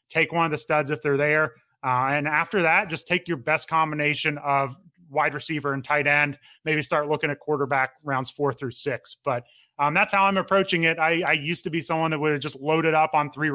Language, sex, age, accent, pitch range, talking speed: English, male, 30-49, American, 140-165 Hz, 235 wpm